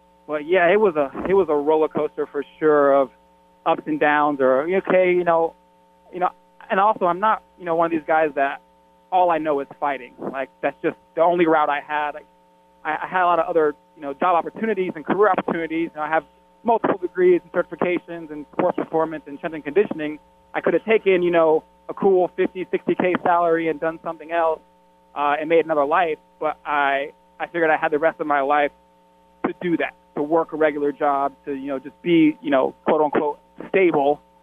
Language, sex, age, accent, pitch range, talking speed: English, male, 20-39, American, 140-170 Hz, 210 wpm